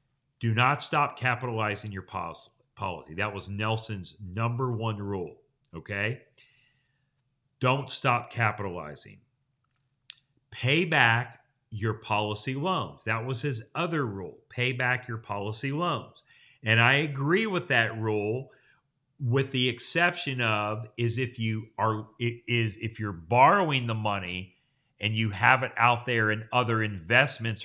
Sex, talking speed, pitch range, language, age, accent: male, 130 wpm, 105-130 Hz, English, 40-59, American